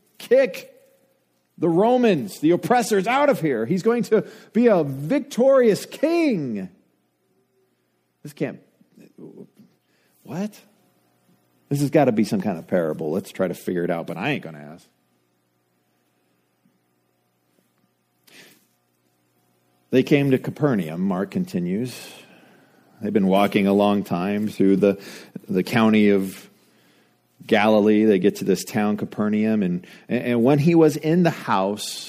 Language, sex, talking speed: English, male, 135 wpm